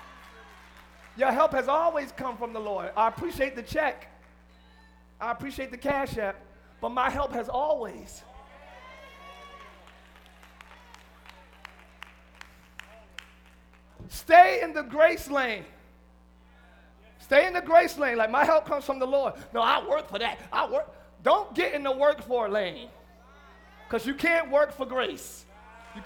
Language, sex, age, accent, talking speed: English, male, 30-49, American, 140 wpm